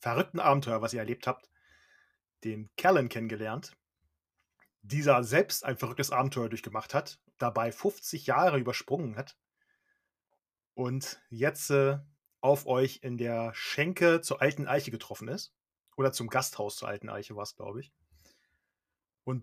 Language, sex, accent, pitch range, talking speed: German, male, German, 115-145 Hz, 140 wpm